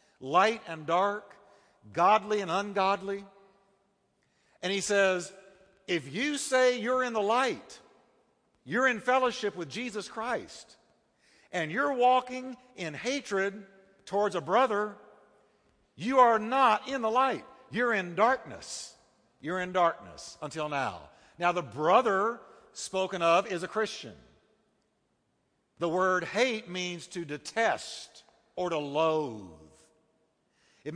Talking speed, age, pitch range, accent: 120 wpm, 50-69, 165-210 Hz, American